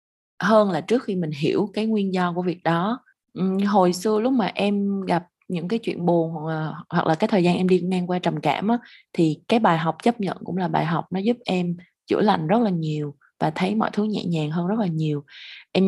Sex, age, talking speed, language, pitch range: female, 20-39, 240 wpm, Vietnamese, 165-210 Hz